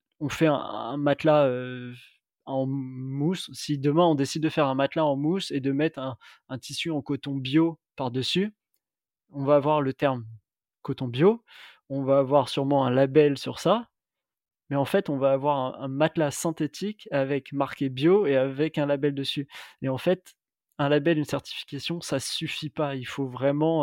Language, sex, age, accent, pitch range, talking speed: French, male, 20-39, French, 135-155 Hz, 185 wpm